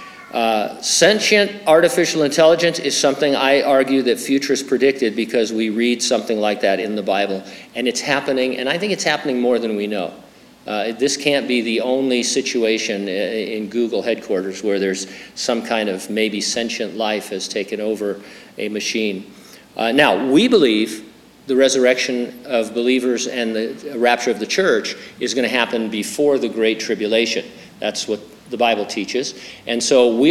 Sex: male